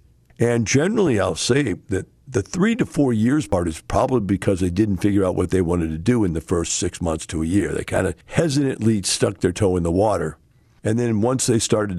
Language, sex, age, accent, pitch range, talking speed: English, male, 50-69, American, 95-130 Hz, 230 wpm